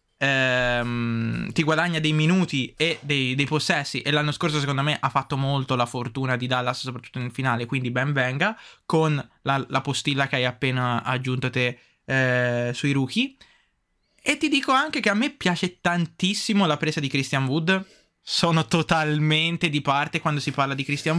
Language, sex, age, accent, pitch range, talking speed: Italian, male, 20-39, native, 135-170 Hz, 175 wpm